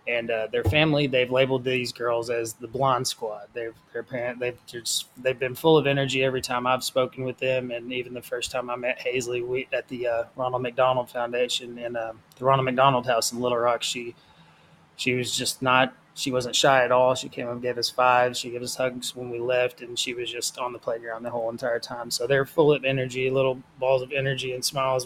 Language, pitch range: English, 120-130 Hz